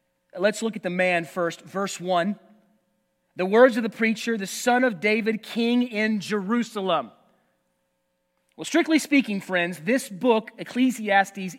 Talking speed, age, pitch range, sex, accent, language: 140 wpm, 30-49, 190-260 Hz, male, American, English